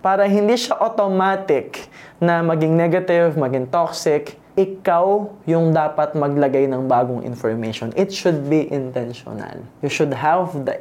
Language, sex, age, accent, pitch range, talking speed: Filipino, male, 20-39, native, 145-215 Hz, 135 wpm